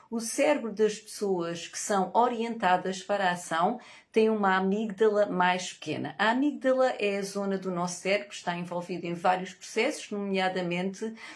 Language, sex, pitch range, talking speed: Portuguese, female, 180-215 Hz, 160 wpm